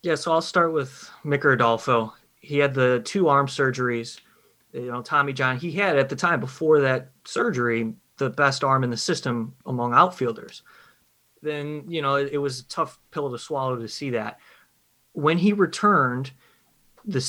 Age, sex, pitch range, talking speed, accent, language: 30-49, male, 125-155 Hz, 175 wpm, American, English